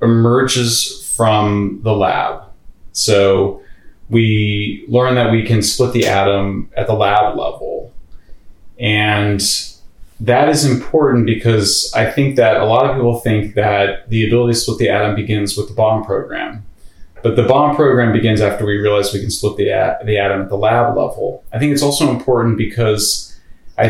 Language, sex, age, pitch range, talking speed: English, male, 30-49, 105-120 Hz, 170 wpm